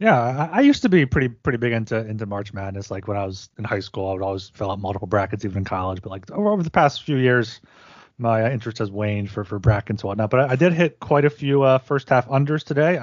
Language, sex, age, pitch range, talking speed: English, male, 30-49, 110-140 Hz, 270 wpm